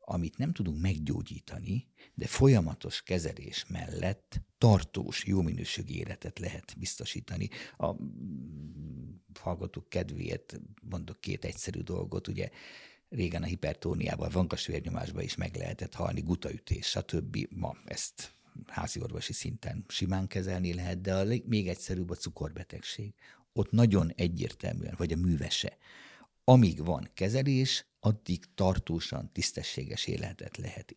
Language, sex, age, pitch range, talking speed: Hungarian, male, 50-69, 85-110 Hz, 115 wpm